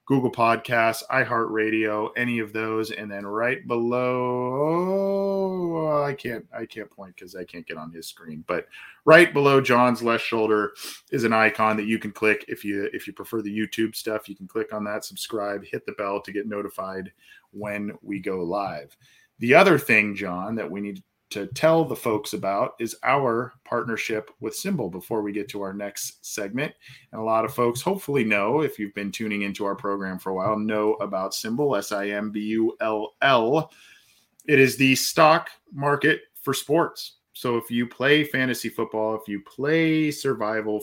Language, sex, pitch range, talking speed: English, male, 105-135 Hz, 180 wpm